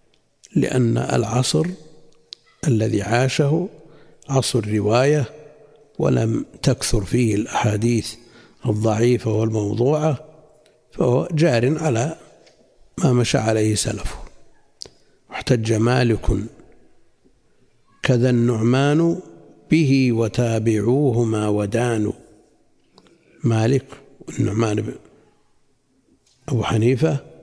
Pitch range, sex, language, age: 110-135 Hz, male, Arabic, 60-79